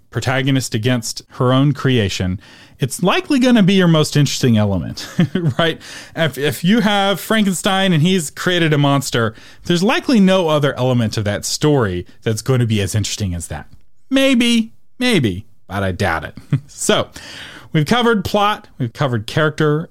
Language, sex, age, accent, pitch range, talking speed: English, male, 40-59, American, 110-160 Hz, 165 wpm